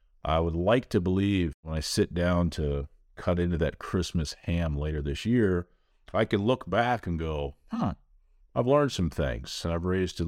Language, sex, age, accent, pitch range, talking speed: English, male, 40-59, American, 80-105 Hz, 195 wpm